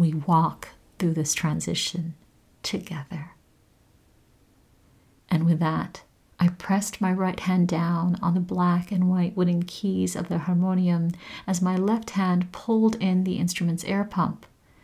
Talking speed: 140 wpm